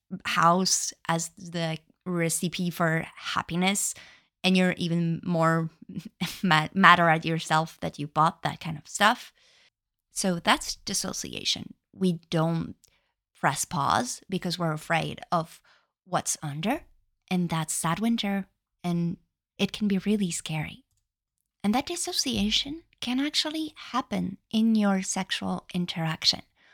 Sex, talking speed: female, 120 wpm